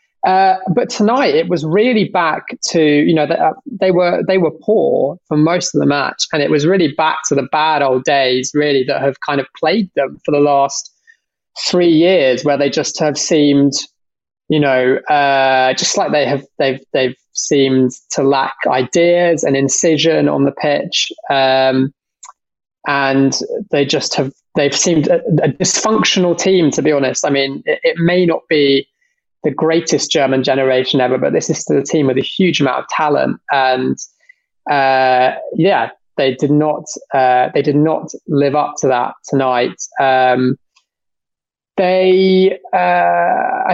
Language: English